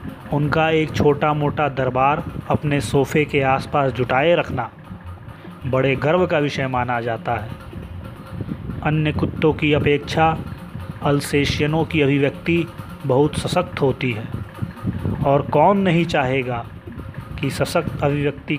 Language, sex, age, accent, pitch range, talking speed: Hindi, male, 30-49, native, 130-155 Hz, 115 wpm